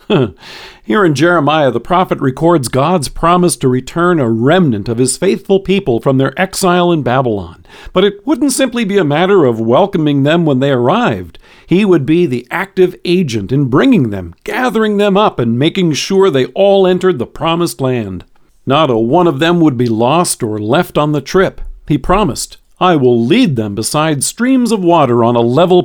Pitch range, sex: 125-185 Hz, male